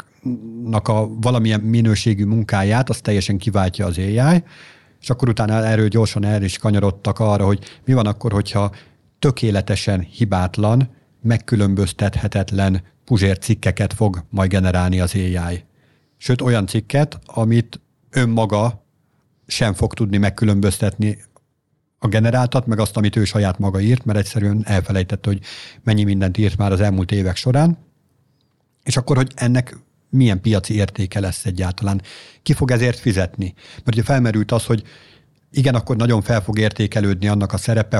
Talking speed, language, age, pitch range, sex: 140 wpm, Hungarian, 50-69, 100-125 Hz, male